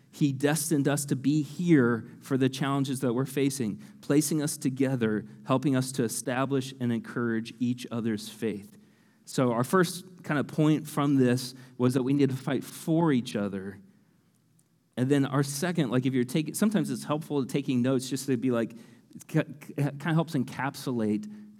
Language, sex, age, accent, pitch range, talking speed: English, male, 40-59, American, 120-150 Hz, 175 wpm